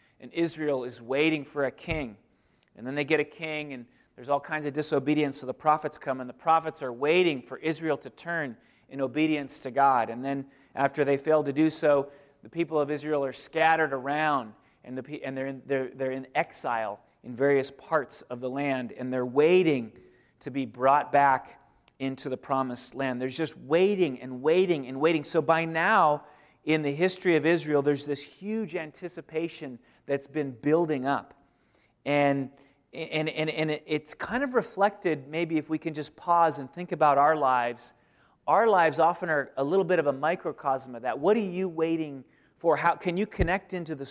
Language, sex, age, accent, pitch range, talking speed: English, male, 30-49, American, 135-160 Hz, 190 wpm